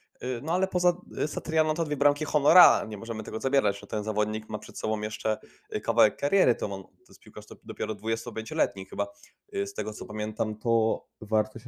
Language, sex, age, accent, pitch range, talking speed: Polish, male, 20-39, native, 105-130 Hz, 185 wpm